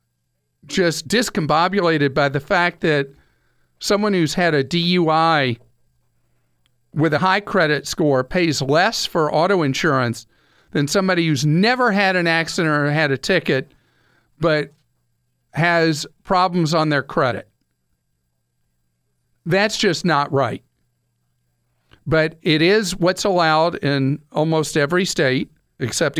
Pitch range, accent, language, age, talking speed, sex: 135-175 Hz, American, English, 50-69, 120 wpm, male